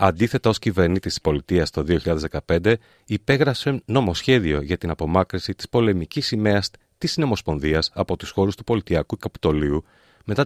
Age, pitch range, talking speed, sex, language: 40-59, 85-115 Hz, 140 wpm, male, Greek